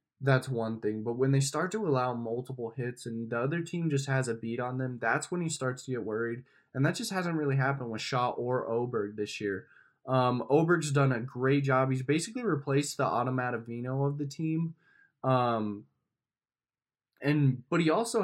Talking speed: 195 wpm